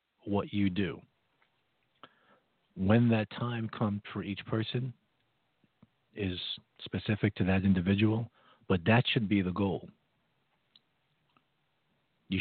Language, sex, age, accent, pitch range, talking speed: English, male, 50-69, American, 100-120 Hz, 105 wpm